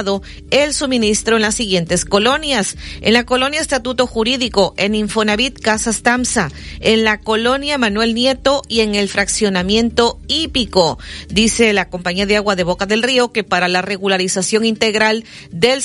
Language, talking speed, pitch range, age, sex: Spanish, 150 wpm, 195-240 Hz, 40-59, female